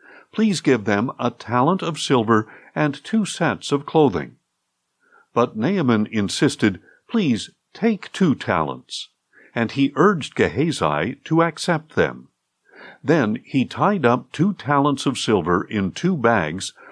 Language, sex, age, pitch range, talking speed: English, male, 60-79, 110-170 Hz, 130 wpm